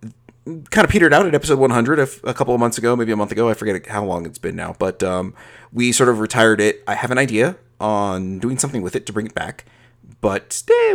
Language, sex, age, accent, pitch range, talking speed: English, male, 30-49, American, 100-120 Hz, 250 wpm